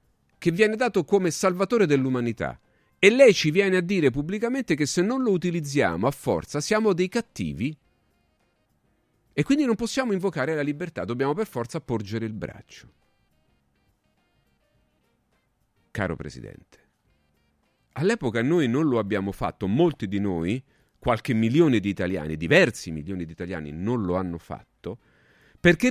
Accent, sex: native, male